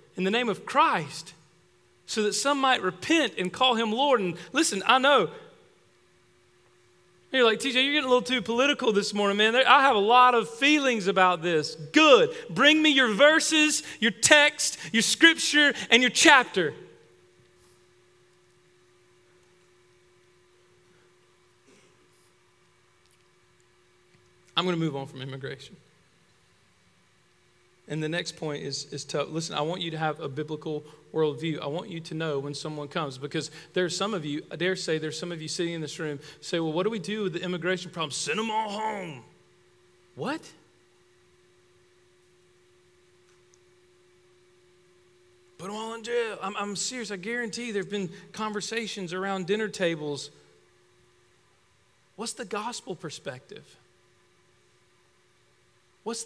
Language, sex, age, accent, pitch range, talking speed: English, male, 40-59, American, 145-225 Hz, 145 wpm